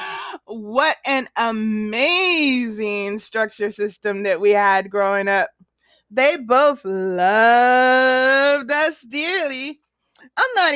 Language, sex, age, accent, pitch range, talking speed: English, female, 20-39, American, 225-300 Hz, 95 wpm